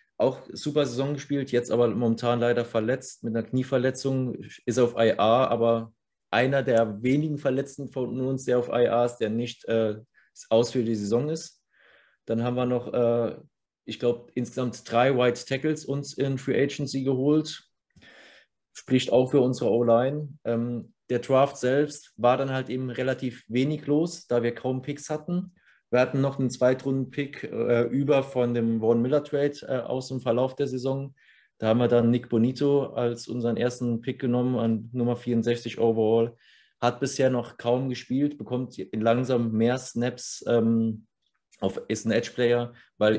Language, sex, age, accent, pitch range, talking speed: German, male, 30-49, German, 115-130 Hz, 160 wpm